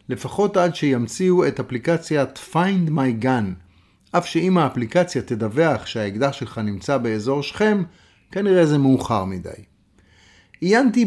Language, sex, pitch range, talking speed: Hebrew, male, 120-170 Hz, 120 wpm